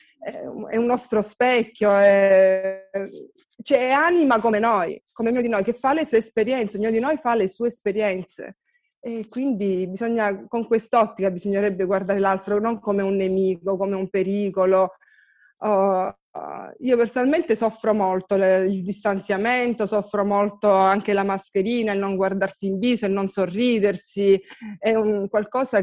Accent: native